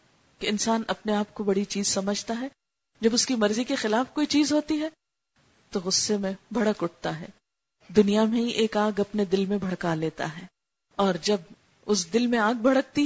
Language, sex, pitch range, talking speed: Urdu, female, 185-215 Hz, 200 wpm